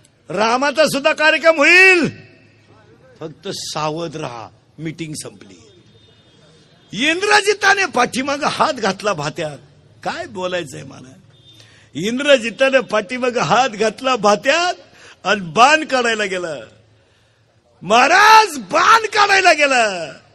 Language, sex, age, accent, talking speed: Marathi, male, 50-69, native, 60 wpm